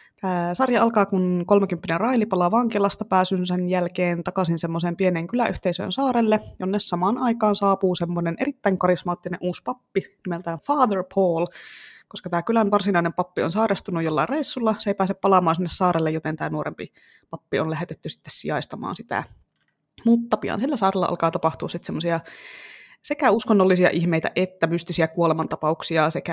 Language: Finnish